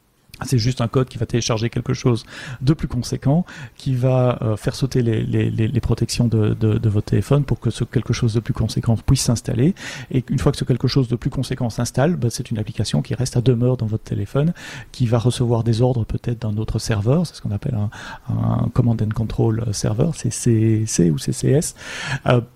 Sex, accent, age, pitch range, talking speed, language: male, French, 30-49, 120-145 Hz, 215 wpm, French